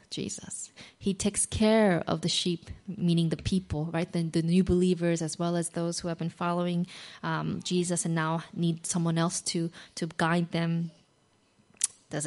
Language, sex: English, female